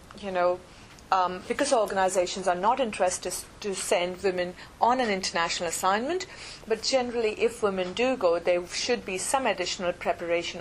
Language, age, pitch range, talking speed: English, 40-59, 180-220 Hz, 155 wpm